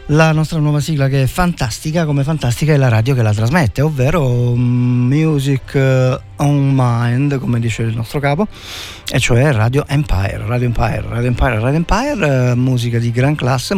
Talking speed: 165 wpm